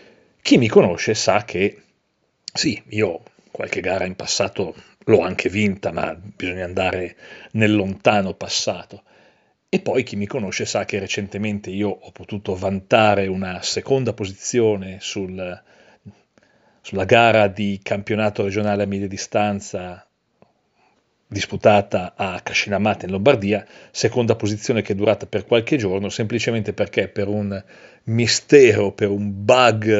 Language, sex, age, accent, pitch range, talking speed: Italian, male, 40-59, native, 100-115 Hz, 130 wpm